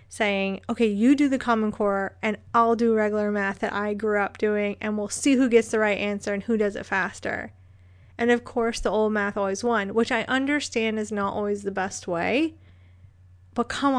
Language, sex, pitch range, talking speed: English, female, 200-240 Hz, 210 wpm